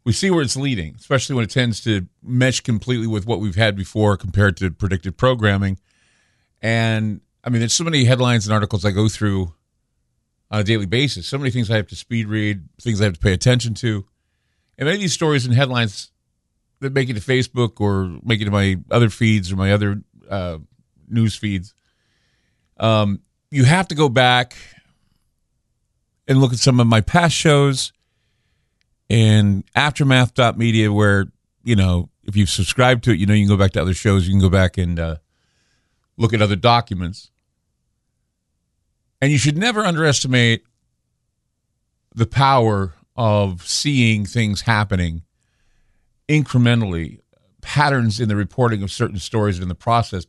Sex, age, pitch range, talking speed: male, 40-59, 100-125 Hz, 170 wpm